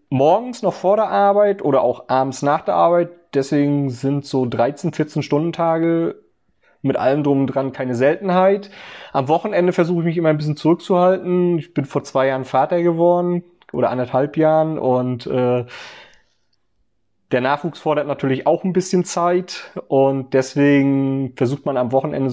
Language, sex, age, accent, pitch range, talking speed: German, male, 30-49, German, 125-150 Hz, 160 wpm